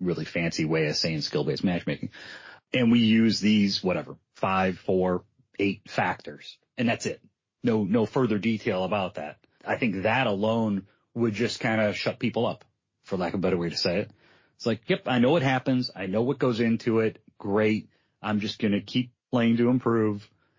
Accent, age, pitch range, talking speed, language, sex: American, 30-49, 100-125 Hz, 195 wpm, English, male